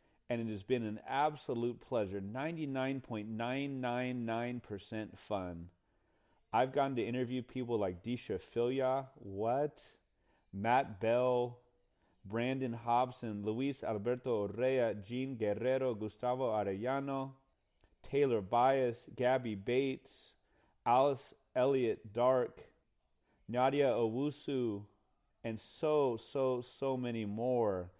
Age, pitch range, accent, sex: 30-49, 105-130 Hz, American, male